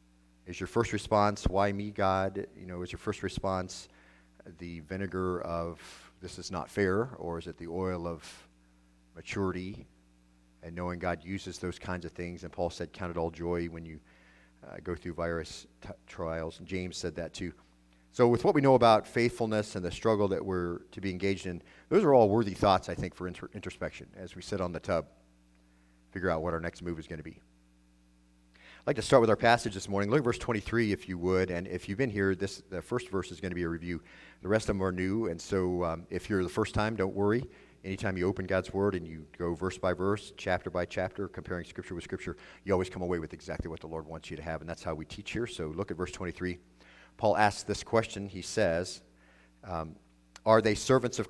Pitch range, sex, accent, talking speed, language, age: 80-100 Hz, male, American, 230 wpm, English, 40-59